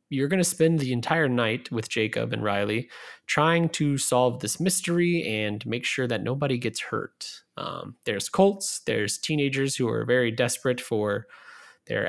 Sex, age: male, 20-39